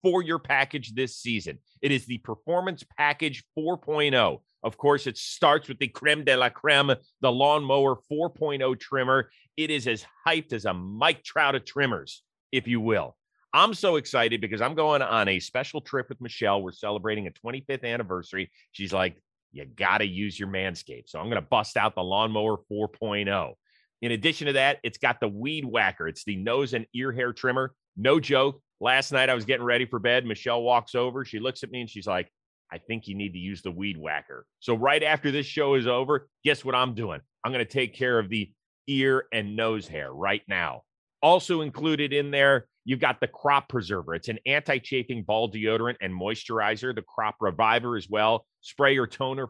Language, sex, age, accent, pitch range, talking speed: English, male, 30-49, American, 110-135 Hz, 200 wpm